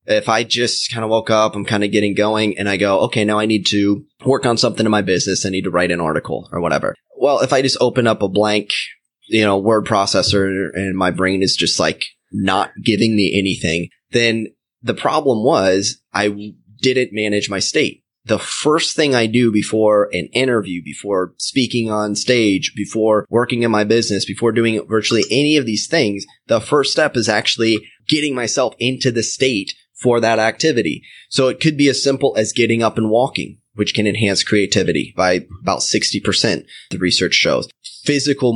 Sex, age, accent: male, 20-39, American